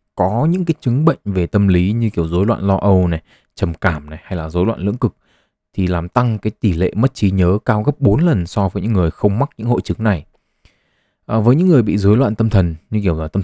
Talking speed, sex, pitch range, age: 270 wpm, male, 90-115 Hz, 20-39